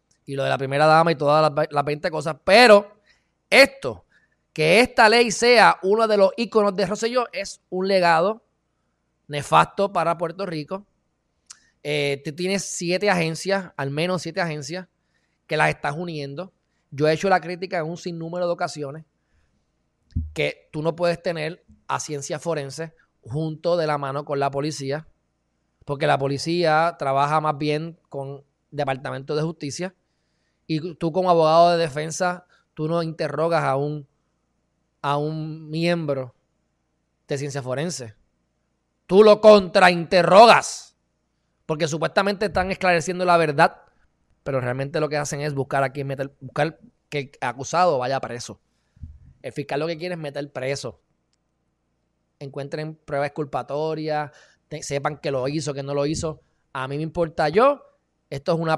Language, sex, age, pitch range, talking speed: Spanish, male, 20-39, 145-180 Hz, 150 wpm